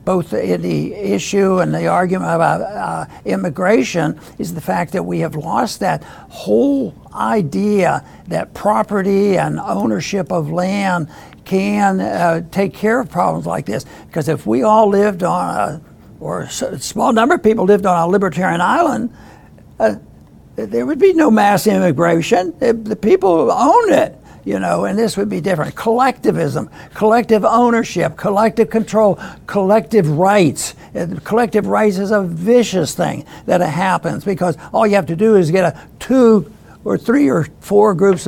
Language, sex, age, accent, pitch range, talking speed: English, male, 60-79, American, 175-220 Hz, 155 wpm